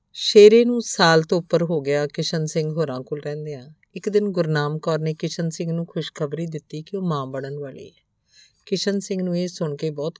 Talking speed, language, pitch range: 210 wpm, Punjabi, 145-175 Hz